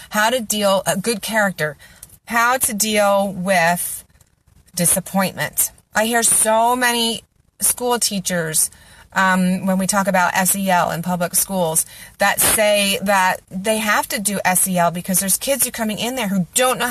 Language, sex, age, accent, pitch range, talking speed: English, female, 30-49, American, 185-235 Hz, 160 wpm